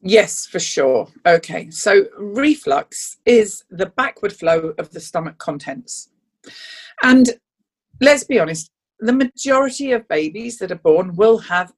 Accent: British